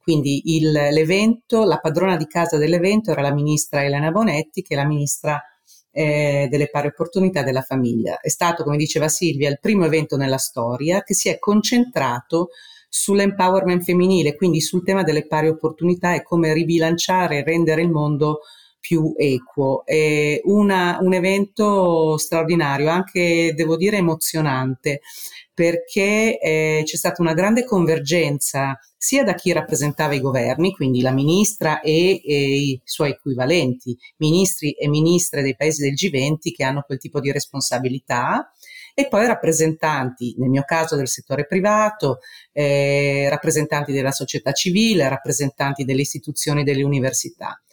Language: Italian